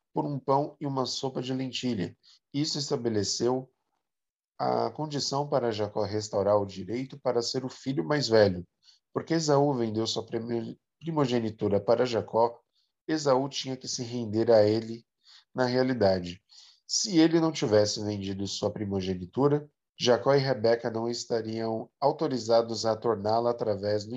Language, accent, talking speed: Portuguese, Brazilian, 140 wpm